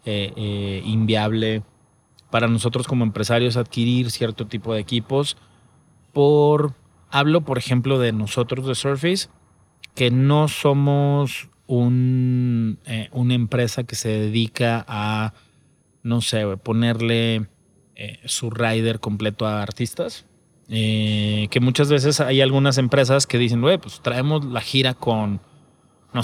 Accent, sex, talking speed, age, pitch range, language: Mexican, male, 130 wpm, 30-49, 110-130 Hz, Spanish